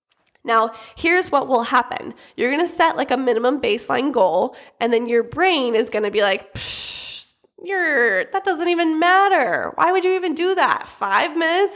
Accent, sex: American, female